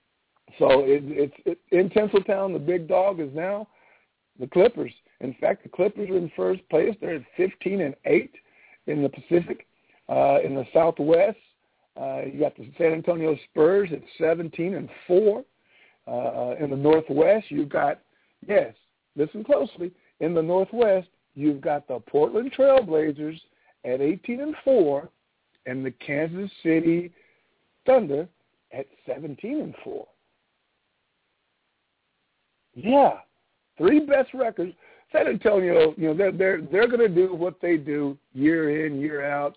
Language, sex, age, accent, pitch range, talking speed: English, male, 50-69, American, 145-195 Hz, 140 wpm